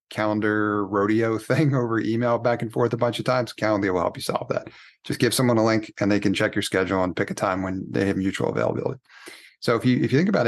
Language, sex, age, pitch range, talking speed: English, male, 30-49, 100-125 Hz, 260 wpm